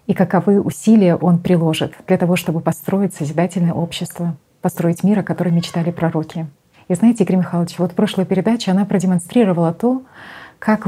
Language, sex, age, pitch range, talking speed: Russian, female, 30-49, 165-195 Hz, 150 wpm